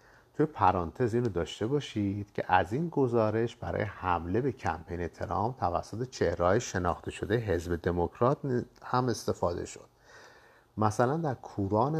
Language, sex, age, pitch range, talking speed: Persian, male, 50-69, 90-125 Hz, 130 wpm